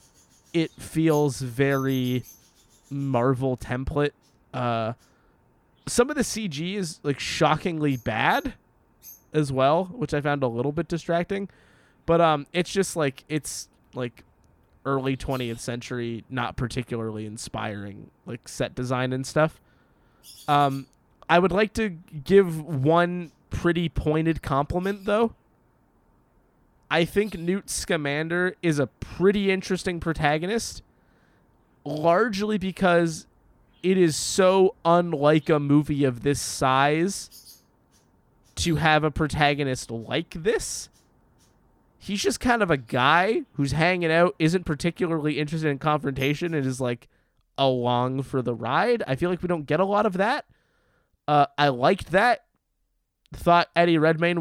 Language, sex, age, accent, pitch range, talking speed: English, male, 20-39, American, 130-175 Hz, 130 wpm